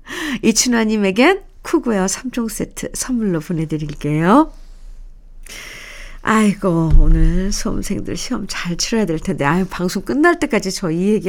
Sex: female